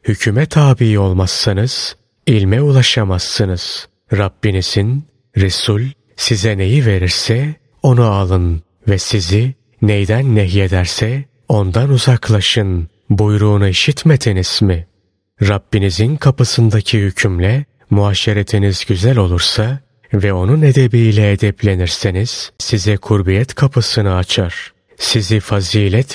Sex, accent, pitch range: male, native, 100-125 Hz